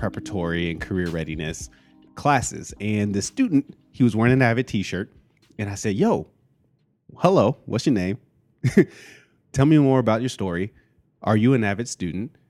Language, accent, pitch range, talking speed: English, American, 100-135 Hz, 160 wpm